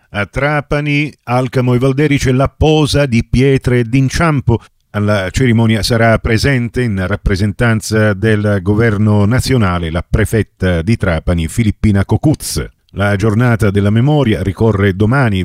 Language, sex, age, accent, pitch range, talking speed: Italian, male, 40-59, native, 100-130 Hz, 120 wpm